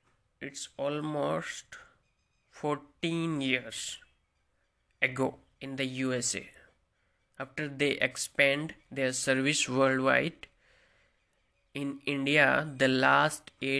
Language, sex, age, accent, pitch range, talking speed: Hindi, male, 20-39, native, 125-140 Hz, 80 wpm